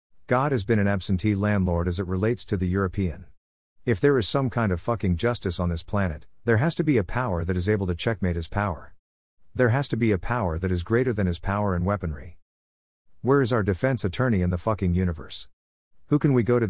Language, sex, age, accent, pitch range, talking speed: English, male, 50-69, American, 90-115 Hz, 230 wpm